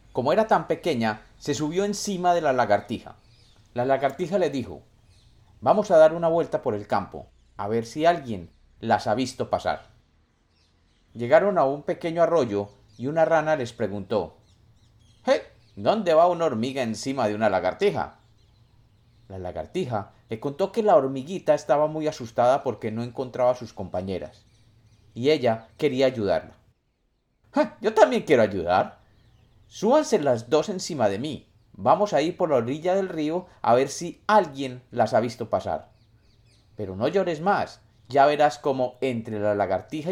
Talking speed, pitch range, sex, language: 155 wpm, 110-155 Hz, male, Spanish